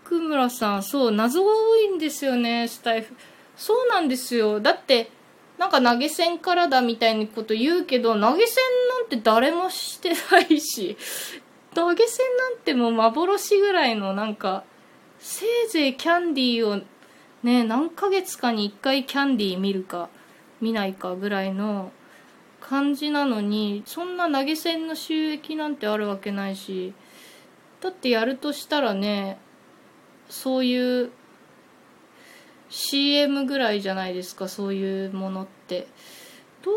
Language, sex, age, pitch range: Japanese, female, 20-39, 215-300 Hz